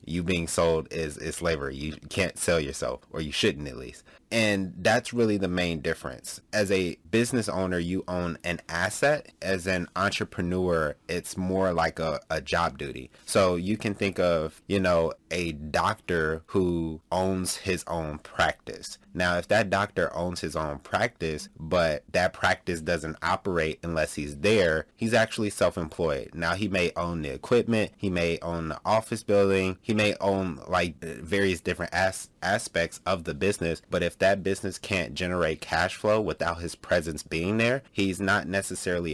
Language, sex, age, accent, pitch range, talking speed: English, male, 30-49, American, 80-100 Hz, 170 wpm